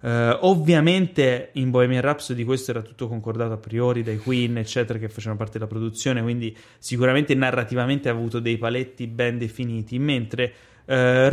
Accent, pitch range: native, 120-150 Hz